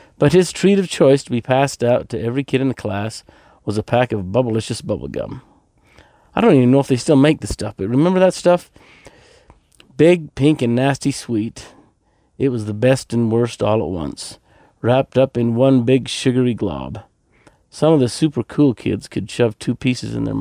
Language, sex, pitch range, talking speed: English, male, 110-135 Hz, 200 wpm